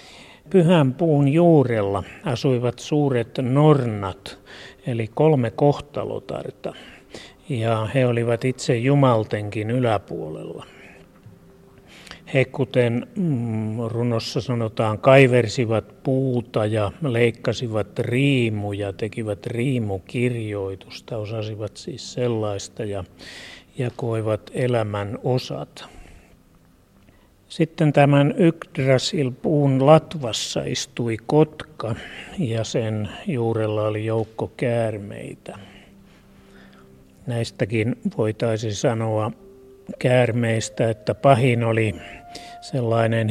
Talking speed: 75 wpm